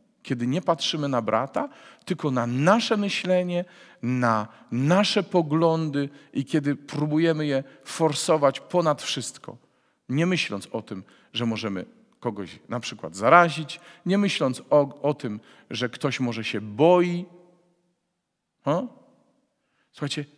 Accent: native